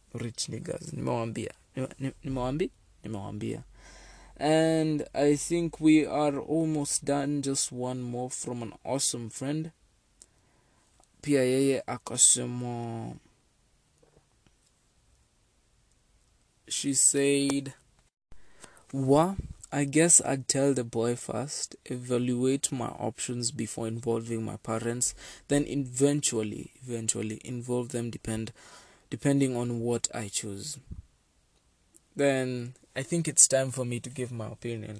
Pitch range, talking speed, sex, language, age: 115-140 Hz, 95 wpm, male, English, 20-39